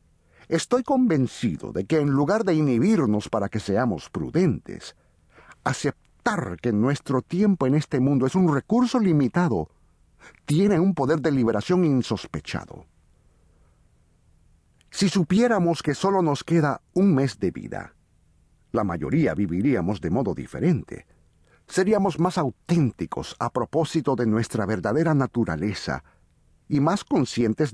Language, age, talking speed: Spanish, 50-69, 125 wpm